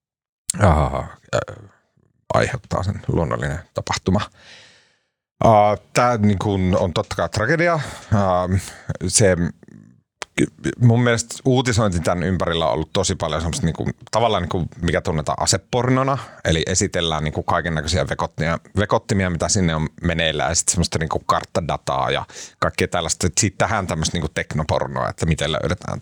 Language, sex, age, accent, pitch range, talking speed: Finnish, male, 30-49, native, 85-115 Hz, 135 wpm